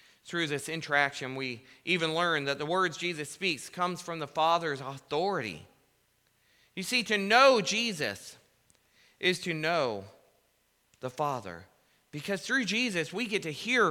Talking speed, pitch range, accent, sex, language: 140 wpm, 130-195 Hz, American, male, English